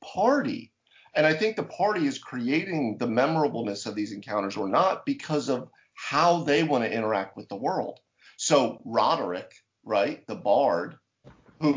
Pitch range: 120-165 Hz